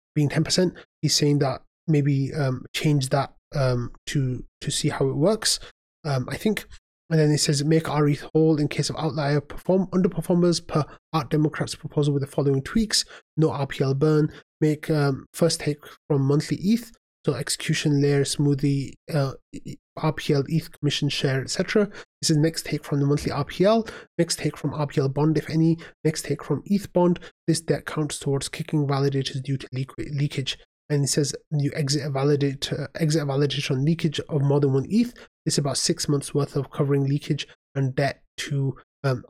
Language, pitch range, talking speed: English, 140-160 Hz, 180 wpm